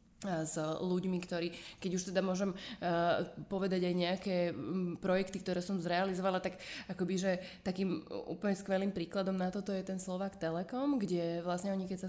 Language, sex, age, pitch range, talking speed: Slovak, female, 20-39, 175-205 Hz, 170 wpm